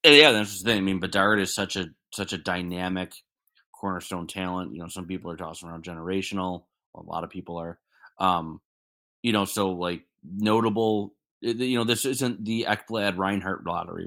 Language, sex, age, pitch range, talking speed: English, male, 30-49, 90-110 Hz, 180 wpm